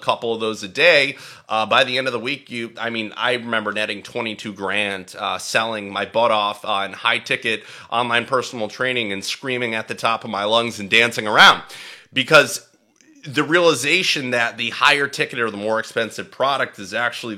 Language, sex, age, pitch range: English, male, 30-49, 105-135 Hz